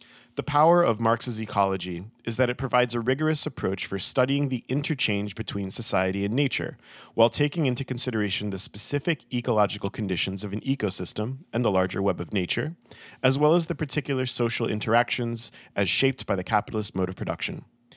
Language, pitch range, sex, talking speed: English, 100-130 Hz, male, 175 wpm